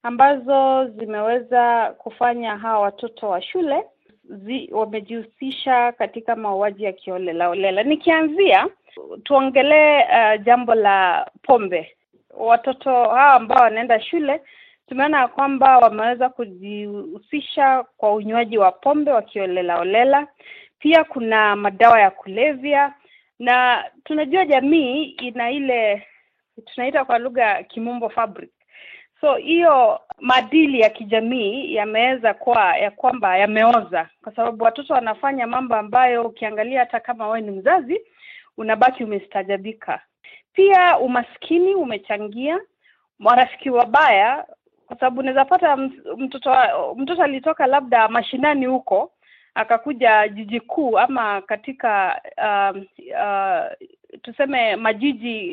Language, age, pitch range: Swahili, 30-49, 220-295 Hz